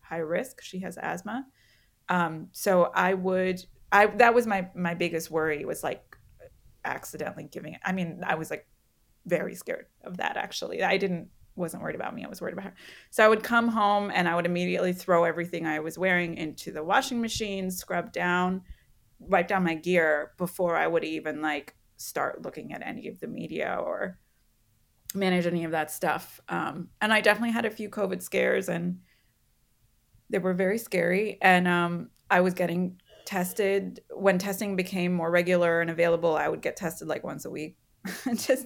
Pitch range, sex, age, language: 165-200 Hz, female, 20-39, English